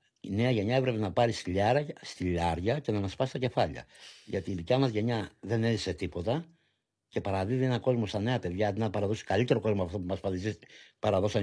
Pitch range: 100-130 Hz